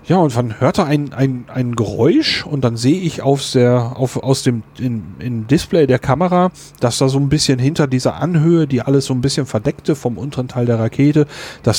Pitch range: 120-145 Hz